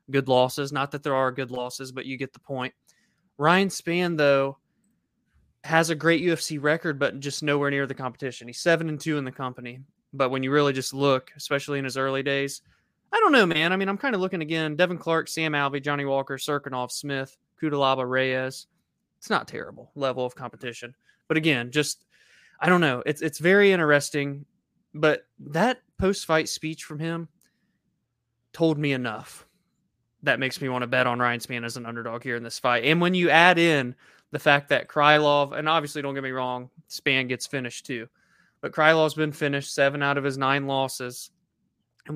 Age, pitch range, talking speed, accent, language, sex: 20-39, 130-155 Hz, 195 wpm, American, English, male